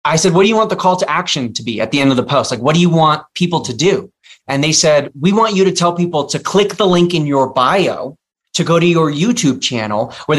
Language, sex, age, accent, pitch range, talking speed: English, male, 30-49, American, 140-185 Hz, 285 wpm